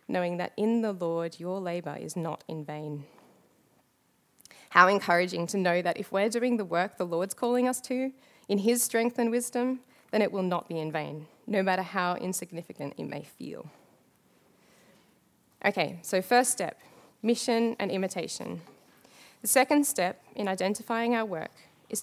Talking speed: 165 wpm